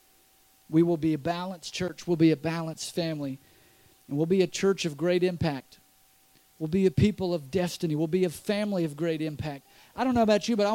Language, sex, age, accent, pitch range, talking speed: English, male, 50-69, American, 155-210 Hz, 220 wpm